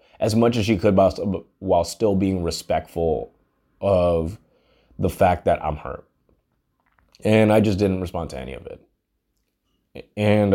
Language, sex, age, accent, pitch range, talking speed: English, male, 20-39, American, 95-110 Hz, 150 wpm